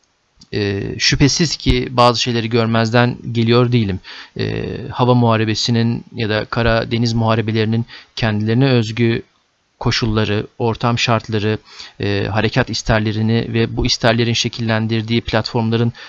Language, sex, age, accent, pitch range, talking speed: Turkish, male, 40-59, native, 115-130 Hz, 100 wpm